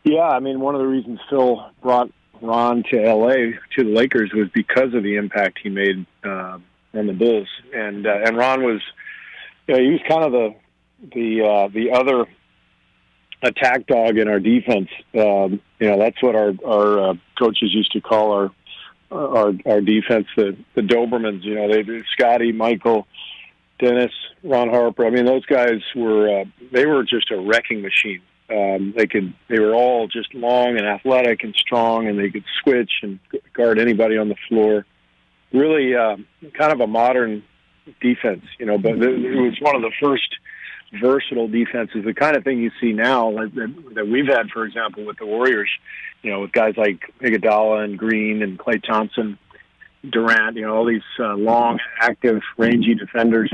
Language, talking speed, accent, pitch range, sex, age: English, 180 wpm, American, 105-125 Hz, male, 50-69